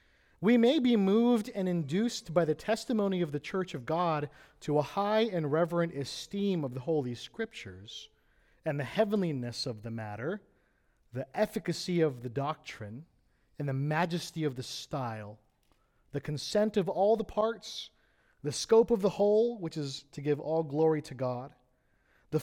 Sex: male